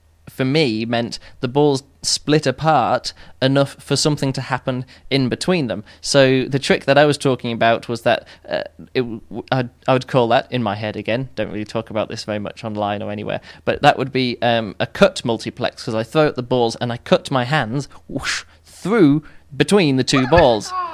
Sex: male